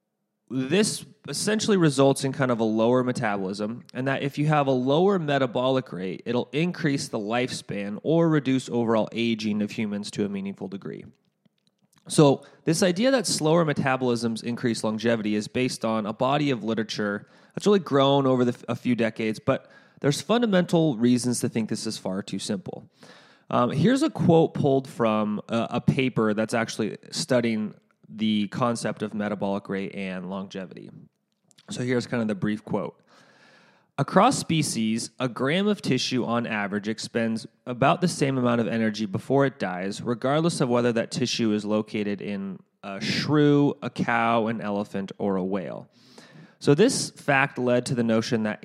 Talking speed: 165 wpm